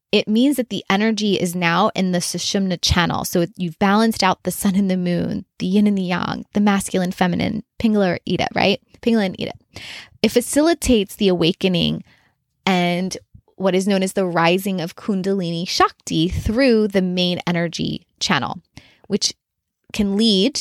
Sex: female